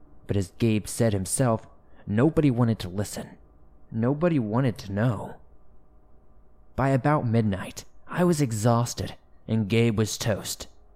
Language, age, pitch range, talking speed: English, 20-39, 100-125 Hz, 125 wpm